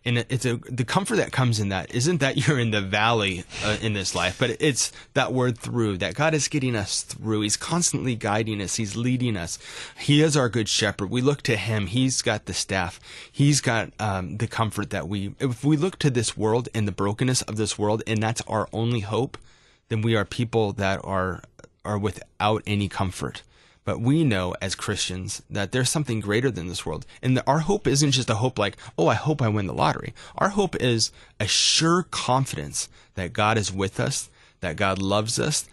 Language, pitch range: English, 100-130 Hz